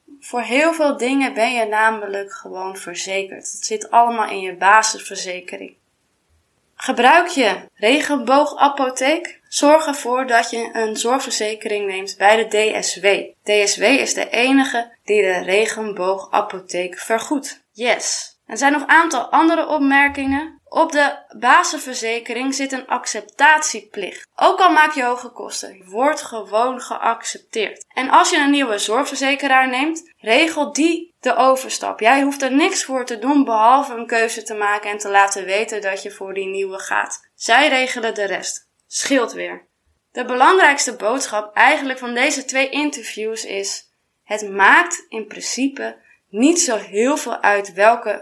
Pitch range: 210-285 Hz